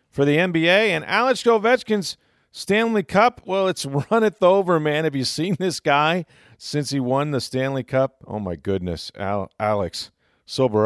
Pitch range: 115-170 Hz